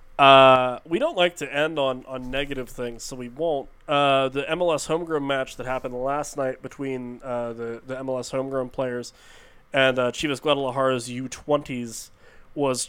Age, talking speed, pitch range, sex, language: 20-39, 165 wpm, 125-145 Hz, male, English